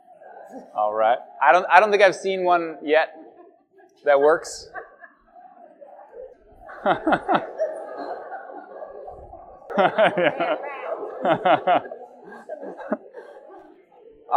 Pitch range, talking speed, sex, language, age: 170-255 Hz, 55 wpm, male, English, 20-39